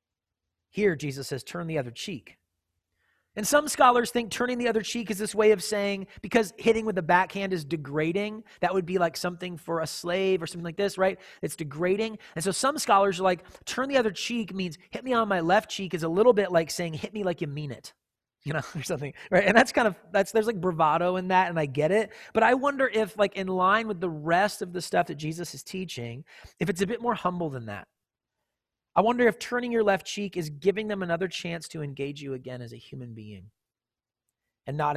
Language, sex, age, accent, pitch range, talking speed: English, male, 30-49, American, 150-205 Hz, 235 wpm